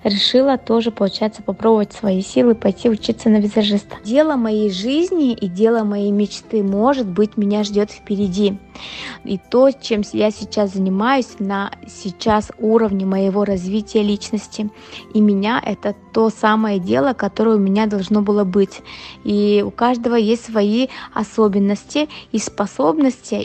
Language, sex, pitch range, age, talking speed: Russian, female, 205-235 Hz, 20-39, 140 wpm